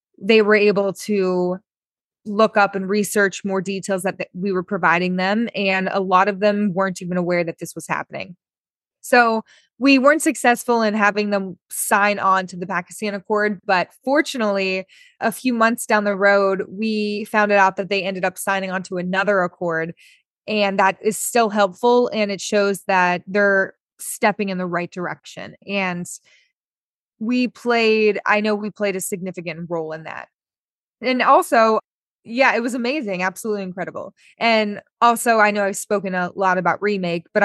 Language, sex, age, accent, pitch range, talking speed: English, female, 20-39, American, 185-215 Hz, 170 wpm